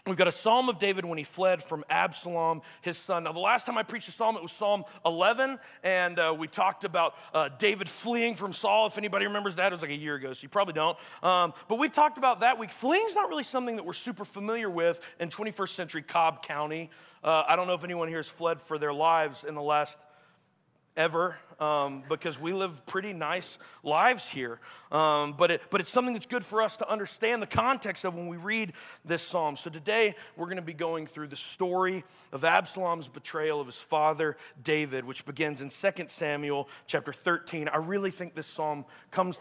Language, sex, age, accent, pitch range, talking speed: English, male, 40-59, American, 150-190 Hz, 220 wpm